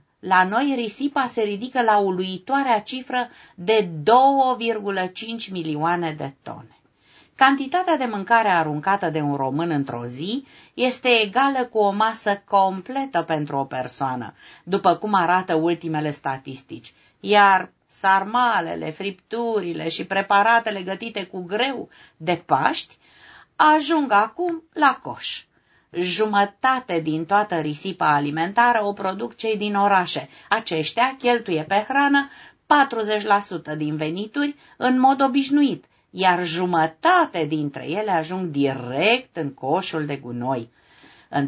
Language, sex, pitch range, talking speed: Romanian, female, 165-235 Hz, 115 wpm